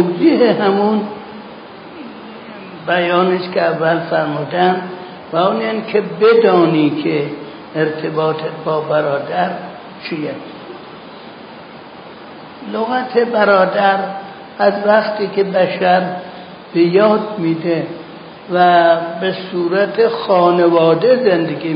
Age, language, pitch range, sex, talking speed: 60-79, Persian, 165-210 Hz, male, 75 wpm